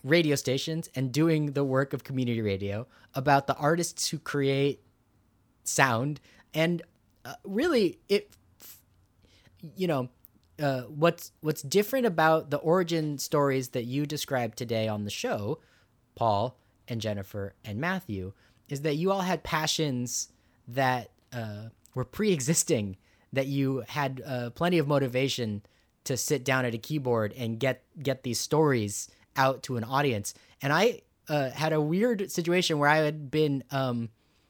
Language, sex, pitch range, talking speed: English, male, 115-155 Hz, 150 wpm